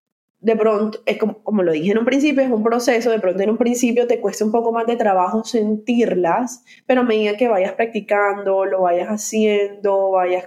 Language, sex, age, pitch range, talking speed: Spanish, female, 20-39, 175-225 Hz, 205 wpm